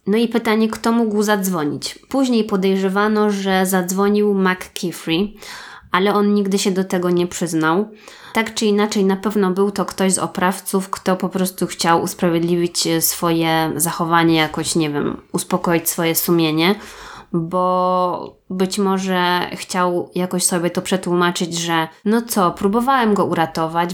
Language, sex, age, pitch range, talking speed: Polish, female, 20-39, 170-205 Hz, 140 wpm